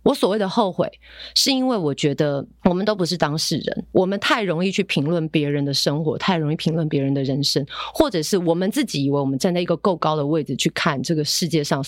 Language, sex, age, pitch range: Chinese, female, 30-49, 155-215 Hz